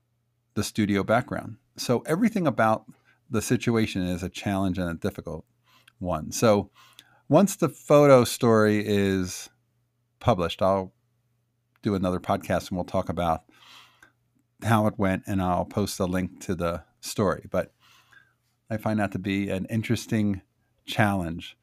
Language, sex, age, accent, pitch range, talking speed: English, male, 50-69, American, 100-130 Hz, 135 wpm